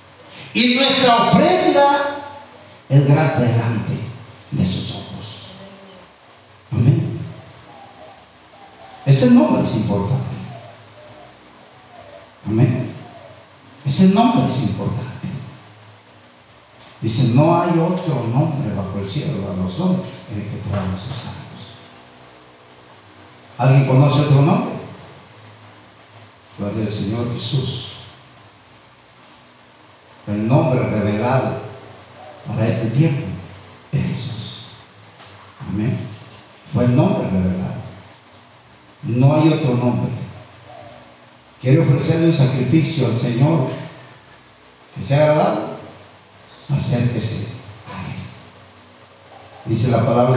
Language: Spanish